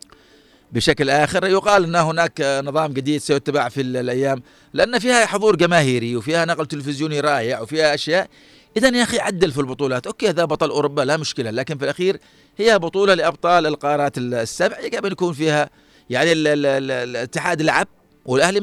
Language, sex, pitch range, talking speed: Arabic, male, 140-175 Hz, 160 wpm